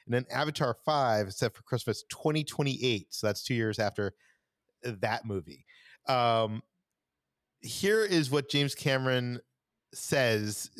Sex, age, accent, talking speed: male, 40-59, American, 120 wpm